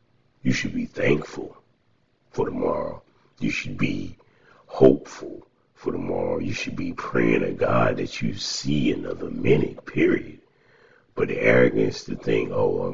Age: 60-79